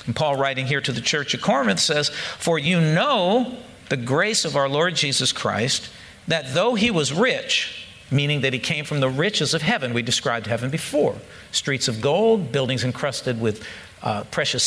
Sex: male